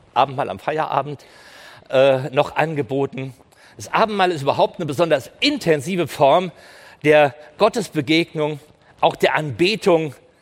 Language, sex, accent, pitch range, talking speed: Dutch, male, German, 150-200 Hz, 110 wpm